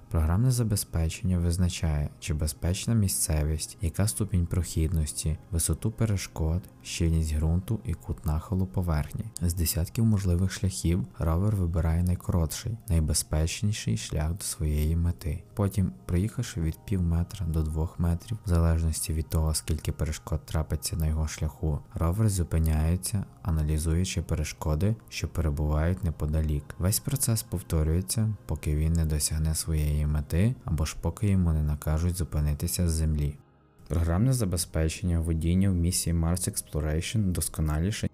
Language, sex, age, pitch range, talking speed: Ukrainian, male, 20-39, 80-100 Hz, 125 wpm